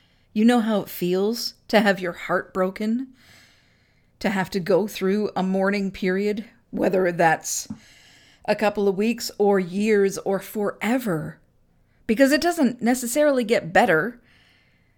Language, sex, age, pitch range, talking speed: English, female, 40-59, 175-225 Hz, 135 wpm